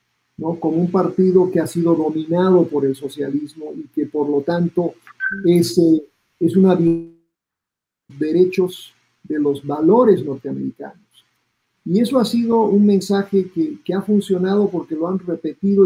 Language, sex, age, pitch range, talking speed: Spanish, male, 50-69, 160-195 Hz, 155 wpm